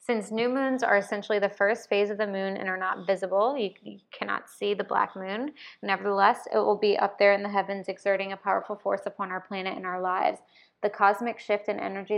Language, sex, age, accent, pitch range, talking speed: English, female, 20-39, American, 190-210 Hz, 220 wpm